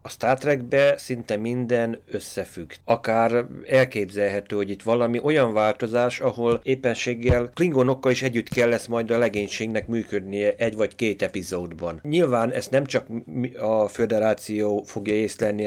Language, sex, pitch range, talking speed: Hungarian, male, 105-130 Hz, 140 wpm